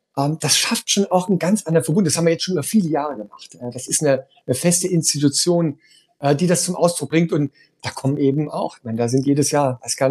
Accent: German